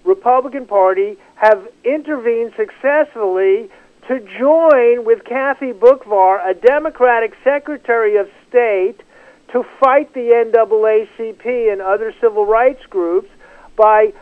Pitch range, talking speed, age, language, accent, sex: 205-295 Hz, 105 wpm, 50-69, English, American, male